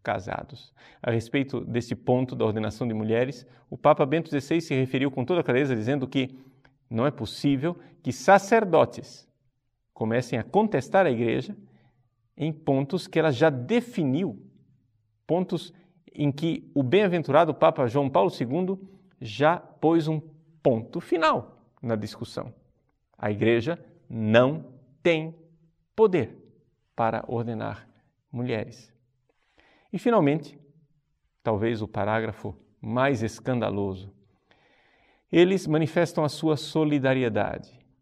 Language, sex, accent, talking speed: Portuguese, male, Brazilian, 115 wpm